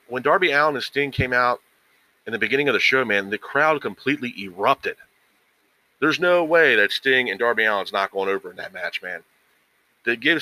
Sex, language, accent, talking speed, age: male, English, American, 200 wpm, 40-59